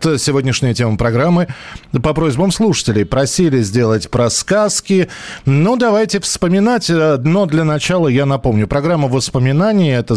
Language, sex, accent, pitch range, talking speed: Russian, male, native, 100-140 Hz, 125 wpm